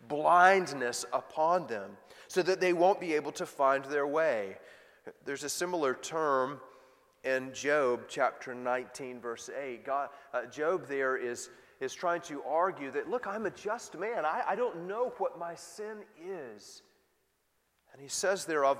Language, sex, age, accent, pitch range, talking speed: English, male, 30-49, American, 130-180 Hz, 165 wpm